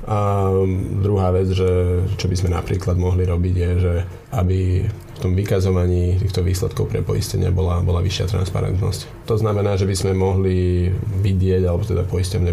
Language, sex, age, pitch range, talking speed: Slovak, male, 20-39, 90-100 Hz, 165 wpm